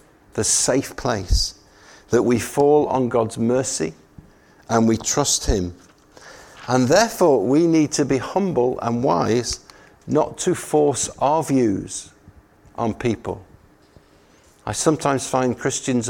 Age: 50-69